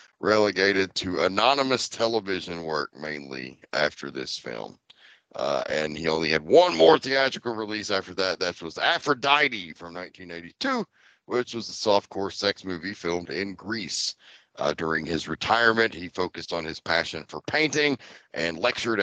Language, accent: English, American